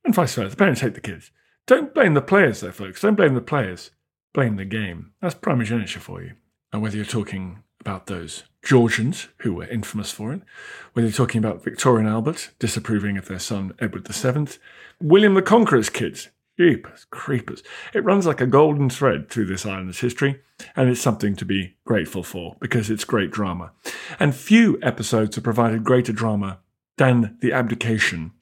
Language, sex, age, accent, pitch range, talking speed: English, male, 40-59, British, 105-150 Hz, 180 wpm